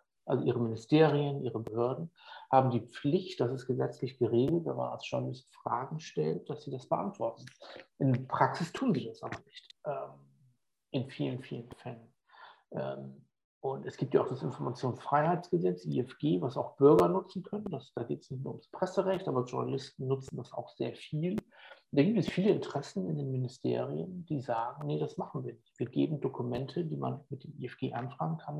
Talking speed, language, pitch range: 180 wpm, German, 120-150 Hz